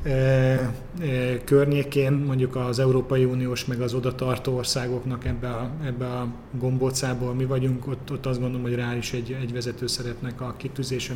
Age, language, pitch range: 30-49, Hungarian, 120-130 Hz